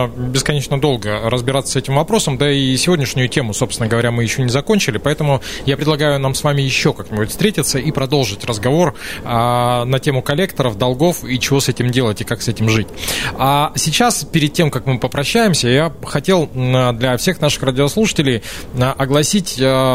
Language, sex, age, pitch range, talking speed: Russian, male, 20-39, 120-150 Hz, 170 wpm